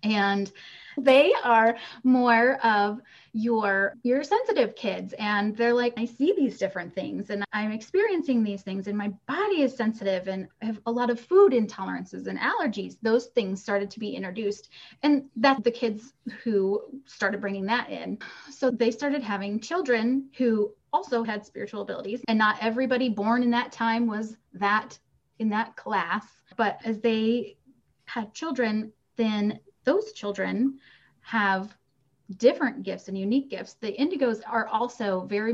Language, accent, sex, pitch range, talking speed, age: English, American, female, 200-255 Hz, 155 wpm, 20-39